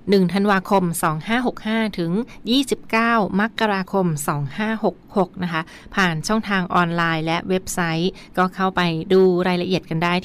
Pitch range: 170-200 Hz